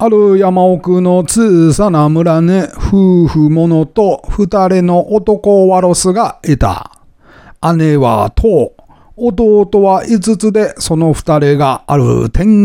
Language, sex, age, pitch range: Japanese, male, 40-59, 160-205 Hz